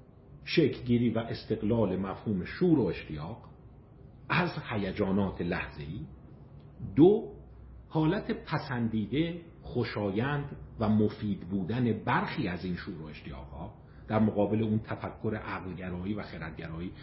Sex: male